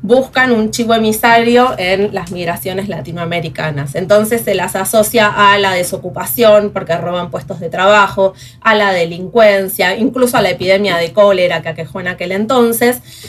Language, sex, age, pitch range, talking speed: Spanish, female, 20-39, 175-220 Hz, 155 wpm